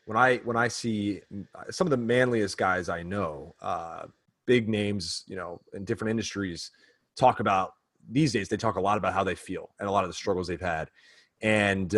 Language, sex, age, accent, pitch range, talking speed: English, male, 30-49, American, 100-125 Hz, 205 wpm